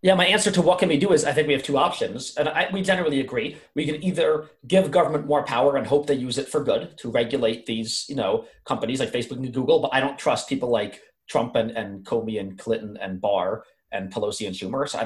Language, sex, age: English, male, 30-49